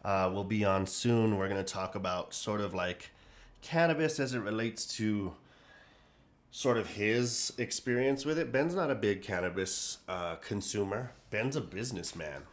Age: 30-49